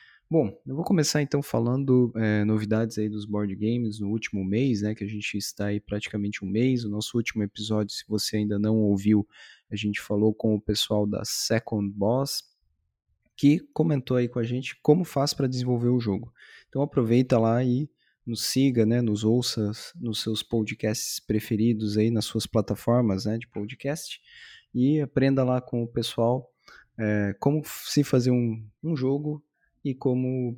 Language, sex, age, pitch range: Portuguese, male, 20-39, 105-130 Hz